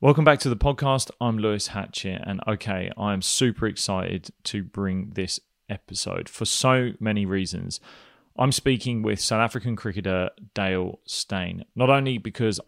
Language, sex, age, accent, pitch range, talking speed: English, male, 30-49, British, 95-110 Hz, 150 wpm